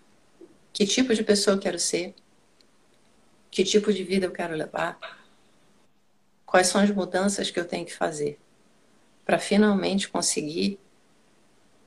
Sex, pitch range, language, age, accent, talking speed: female, 165-205 Hz, Portuguese, 50-69, Brazilian, 130 wpm